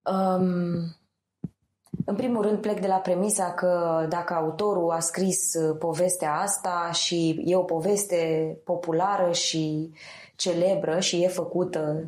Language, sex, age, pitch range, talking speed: Romanian, female, 20-39, 170-200 Hz, 120 wpm